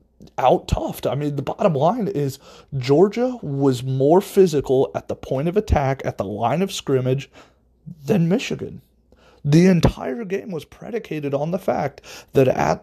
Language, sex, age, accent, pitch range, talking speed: English, male, 30-49, American, 120-165 Hz, 155 wpm